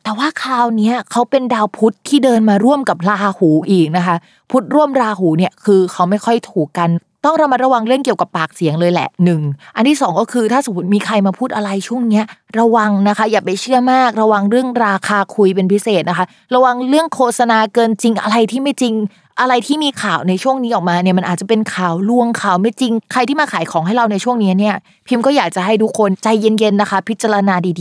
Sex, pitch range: female, 175-235 Hz